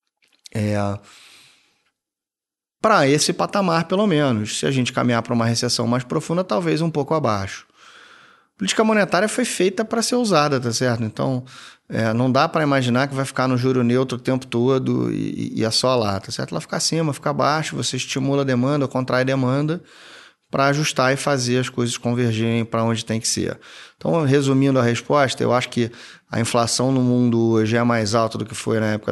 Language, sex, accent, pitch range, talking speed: Portuguese, male, Brazilian, 115-135 Hz, 195 wpm